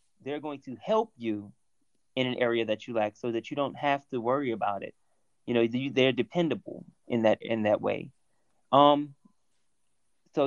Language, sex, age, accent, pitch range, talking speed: English, male, 30-49, American, 125-165 Hz, 180 wpm